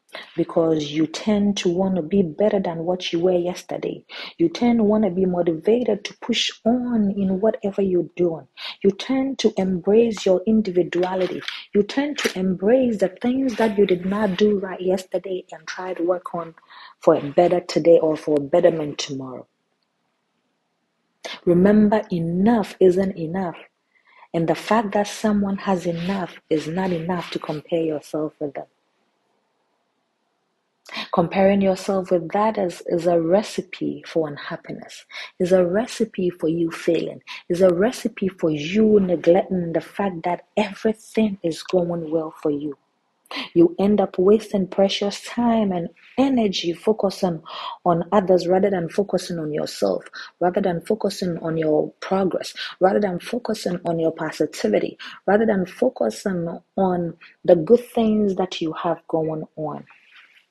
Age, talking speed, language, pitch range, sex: 40-59, 150 wpm, English, 170-210 Hz, female